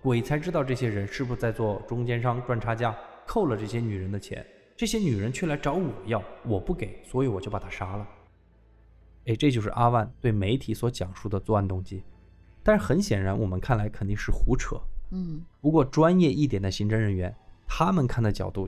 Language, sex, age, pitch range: Chinese, male, 20-39, 100-140 Hz